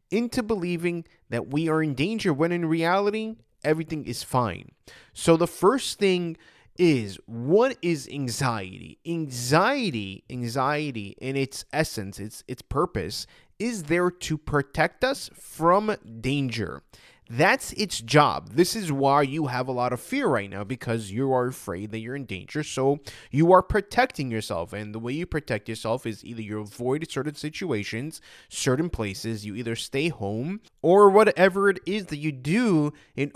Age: 20-39